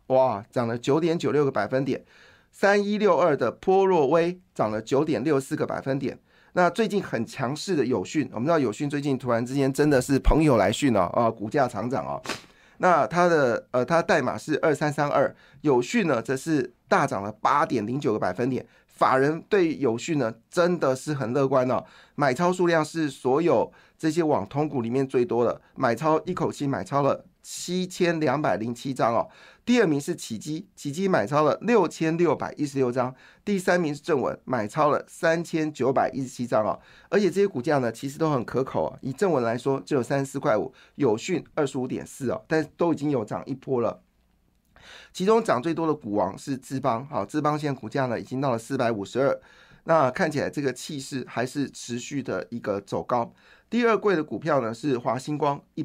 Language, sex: Chinese, male